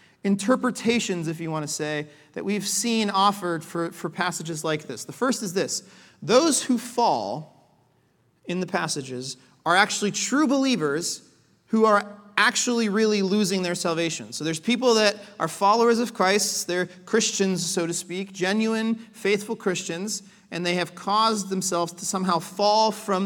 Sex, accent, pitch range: male, American, 165-210 Hz